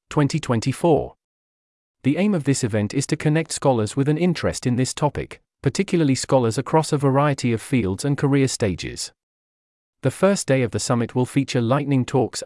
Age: 40-59